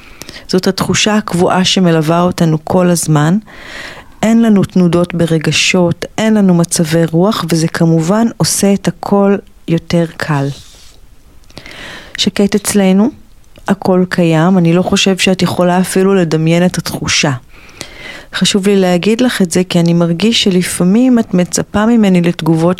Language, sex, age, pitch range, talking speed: Hebrew, female, 40-59, 165-195 Hz, 130 wpm